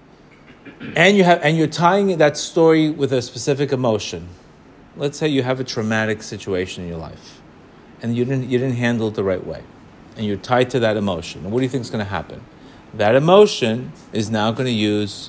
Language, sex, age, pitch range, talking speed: English, male, 40-59, 105-135 Hz, 210 wpm